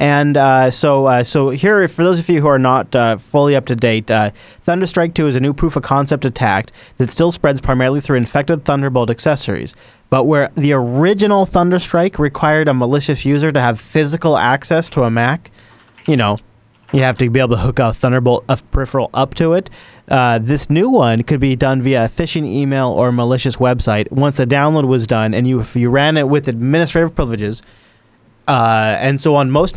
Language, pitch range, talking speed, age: English, 120-150 Hz, 195 wpm, 30-49